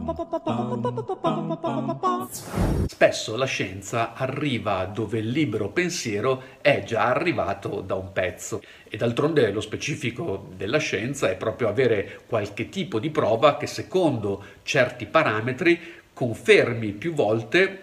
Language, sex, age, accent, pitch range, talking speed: Italian, male, 50-69, native, 110-155 Hz, 115 wpm